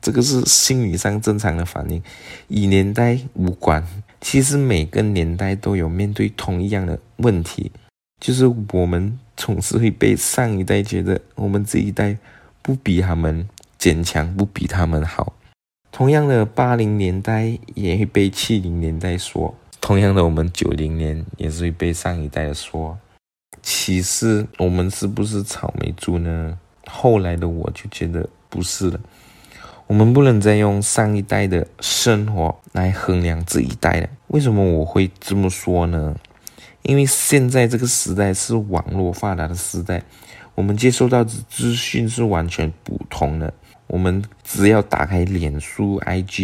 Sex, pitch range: male, 85-110 Hz